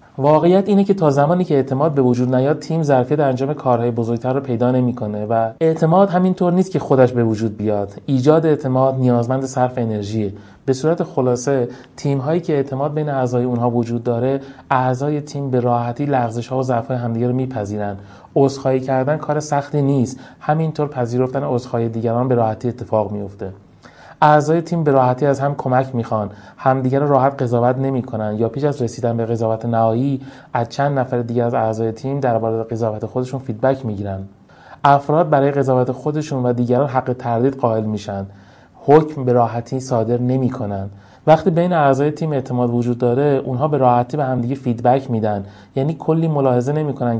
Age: 30-49